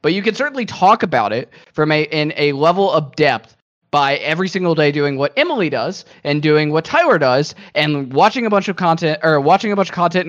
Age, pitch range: 10-29, 130-160 Hz